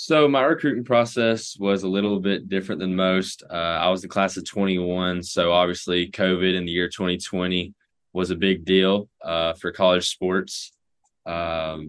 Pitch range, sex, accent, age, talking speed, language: 90-100 Hz, male, American, 10-29, 170 wpm, English